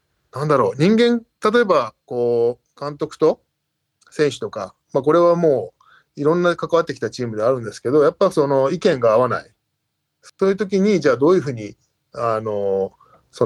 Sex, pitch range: male, 110-160 Hz